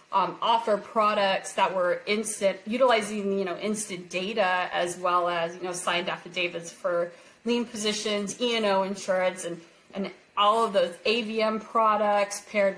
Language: English